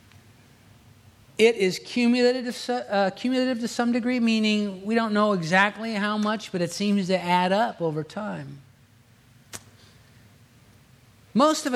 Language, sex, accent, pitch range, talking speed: English, male, American, 125-210 Hz, 115 wpm